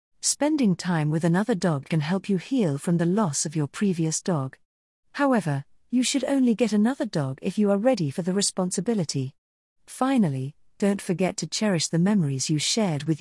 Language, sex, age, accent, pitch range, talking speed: English, female, 40-59, British, 155-215 Hz, 180 wpm